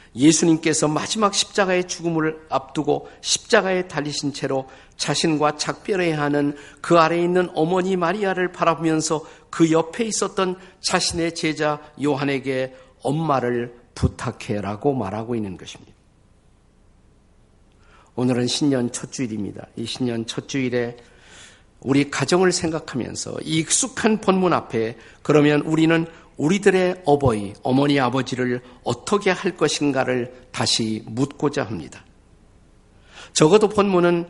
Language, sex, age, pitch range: Korean, male, 50-69, 120-170 Hz